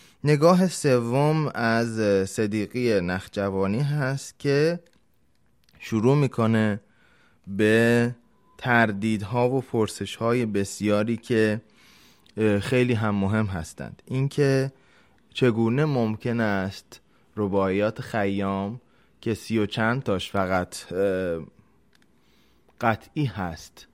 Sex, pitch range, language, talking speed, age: male, 100-125 Hz, Persian, 85 wpm, 20-39